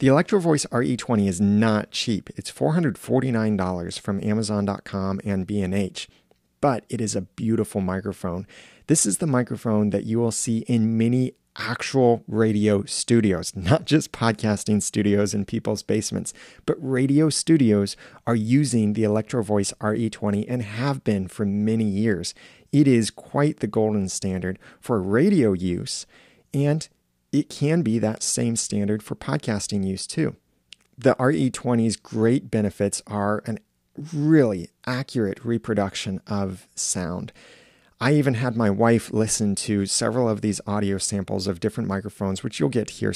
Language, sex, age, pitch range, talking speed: English, male, 30-49, 100-120 Hz, 145 wpm